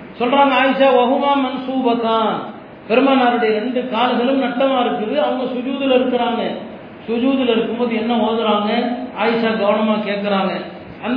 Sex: male